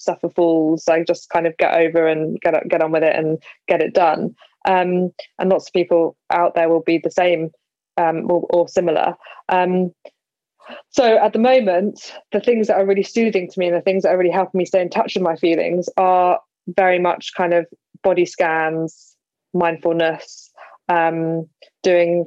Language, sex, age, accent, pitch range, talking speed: English, female, 20-39, British, 170-190 Hz, 190 wpm